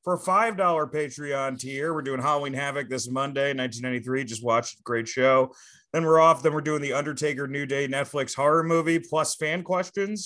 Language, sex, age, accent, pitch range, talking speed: English, male, 30-49, American, 120-155 Hz, 200 wpm